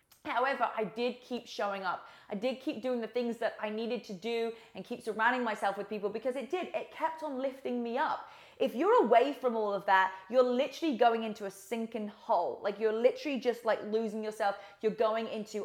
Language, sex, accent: English, female, British